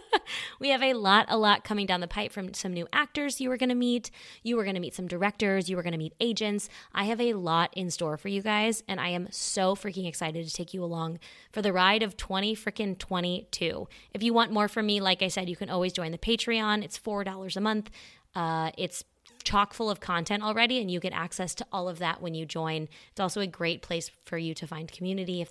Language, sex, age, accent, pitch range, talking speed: English, female, 20-39, American, 170-210 Hz, 250 wpm